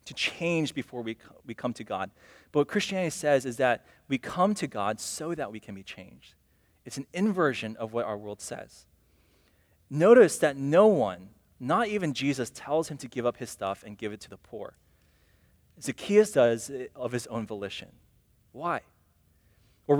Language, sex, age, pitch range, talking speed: English, male, 20-39, 100-155 Hz, 180 wpm